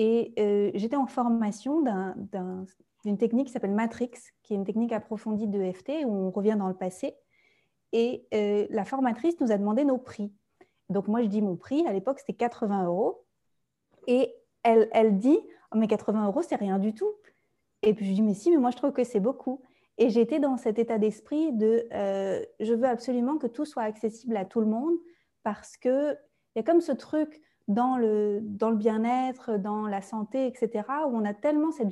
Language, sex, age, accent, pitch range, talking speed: French, female, 30-49, French, 215-270 Hz, 205 wpm